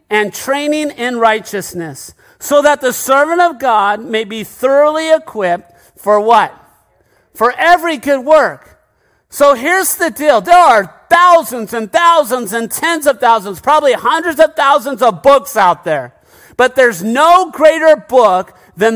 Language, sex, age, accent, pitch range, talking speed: English, male, 50-69, American, 215-305 Hz, 150 wpm